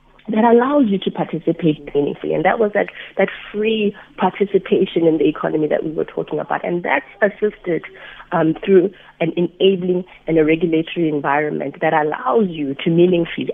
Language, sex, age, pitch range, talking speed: English, female, 30-49, 150-185 Hz, 165 wpm